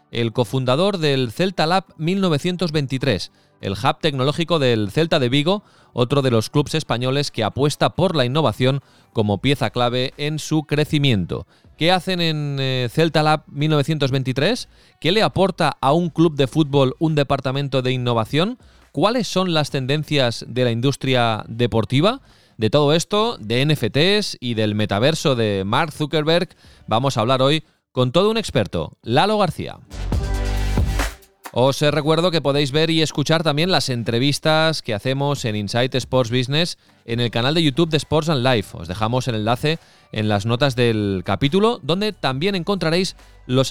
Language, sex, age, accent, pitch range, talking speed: Spanish, male, 30-49, Spanish, 120-160 Hz, 160 wpm